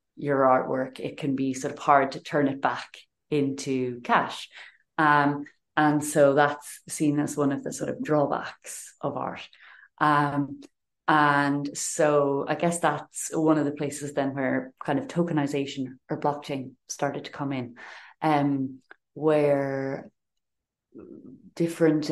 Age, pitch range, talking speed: 30-49, 140-165 Hz, 140 wpm